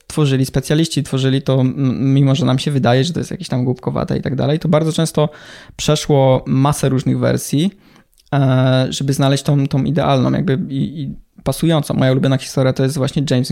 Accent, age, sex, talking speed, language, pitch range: native, 20-39, male, 180 wpm, Polish, 130-145 Hz